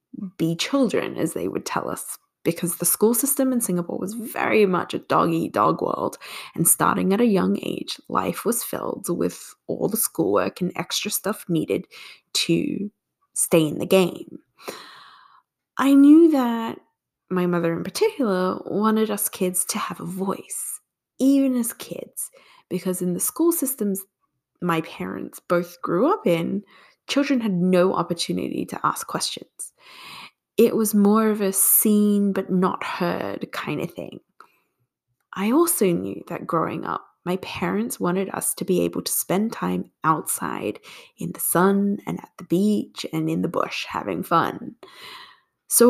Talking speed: 155 wpm